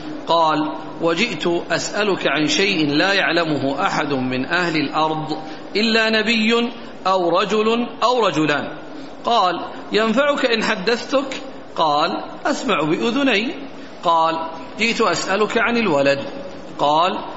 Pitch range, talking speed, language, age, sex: 165-220 Hz, 105 wpm, Arabic, 40-59, male